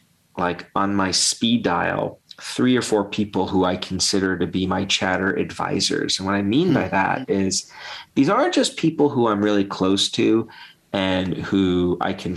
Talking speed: 180 wpm